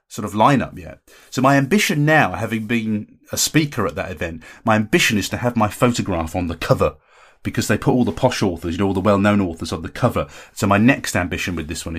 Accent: British